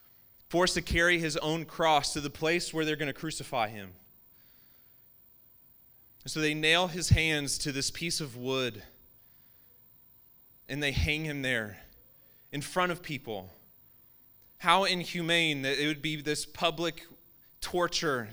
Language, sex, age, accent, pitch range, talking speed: English, male, 30-49, American, 130-170 Hz, 140 wpm